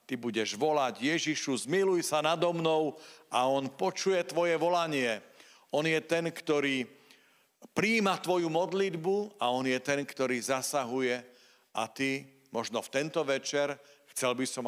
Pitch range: 110-155 Hz